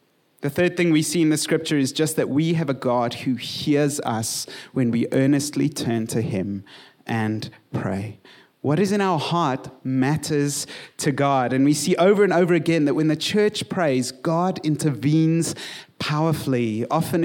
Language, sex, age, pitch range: English, male, 30-49, 135-175 Hz